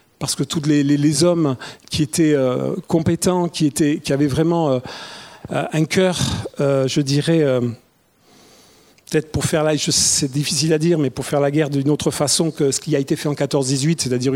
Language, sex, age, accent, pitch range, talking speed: French, male, 40-59, French, 140-170 Hz, 200 wpm